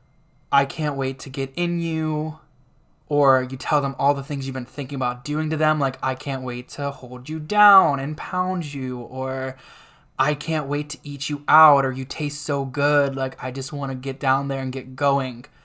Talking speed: 215 wpm